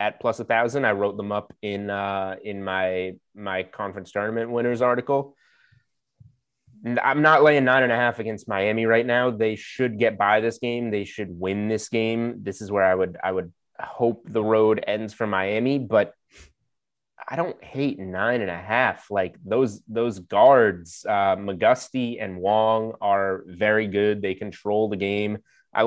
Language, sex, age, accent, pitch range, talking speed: English, male, 20-39, American, 100-120 Hz, 175 wpm